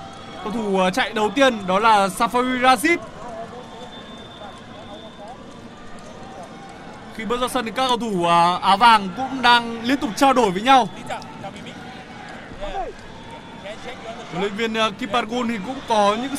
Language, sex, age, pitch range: Vietnamese, male, 20-39, 220-270 Hz